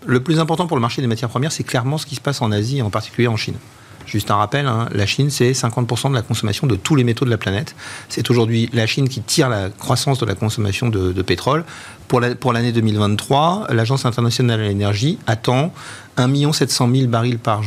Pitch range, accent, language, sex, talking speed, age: 110-135 Hz, French, French, male, 235 wpm, 50-69